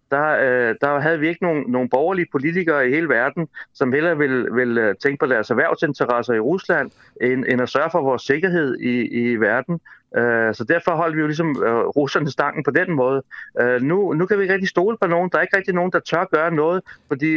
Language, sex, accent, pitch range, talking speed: Danish, male, native, 125-170 Hz, 220 wpm